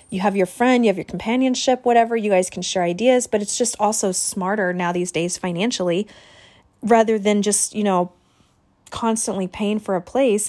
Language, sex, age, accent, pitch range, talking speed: English, female, 20-39, American, 180-230 Hz, 190 wpm